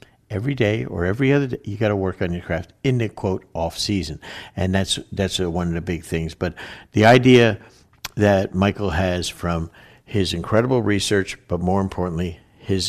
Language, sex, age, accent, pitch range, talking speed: English, male, 50-69, American, 90-110 Hz, 180 wpm